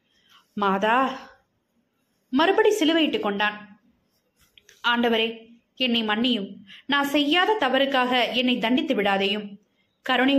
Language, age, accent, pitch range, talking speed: Tamil, 20-39, native, 210-315 Hz, 80 wpm